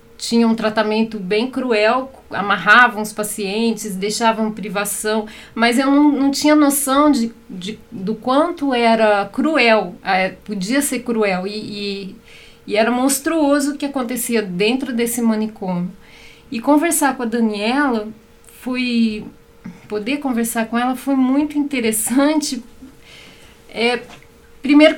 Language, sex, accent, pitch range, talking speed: Portuguese, female, Brazilian, 220-280 Hz, 110 wpm